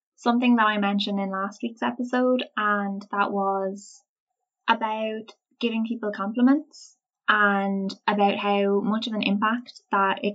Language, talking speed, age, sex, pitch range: English, 140 wpm, 10-29, female, 200-235 Hz